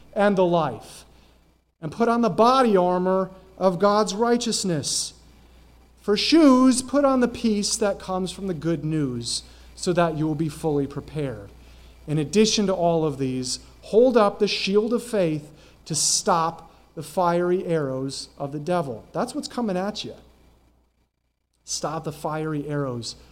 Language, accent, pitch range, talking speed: English, American, 115-185 Hz, 155 wpm